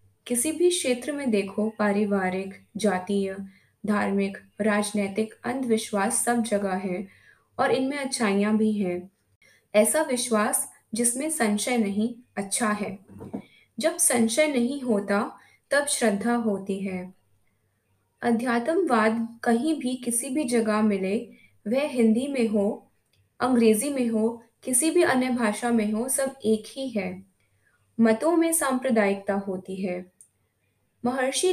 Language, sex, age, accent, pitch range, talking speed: Hindi, female, 20-39, native, 195-250 Hz, 120 wpm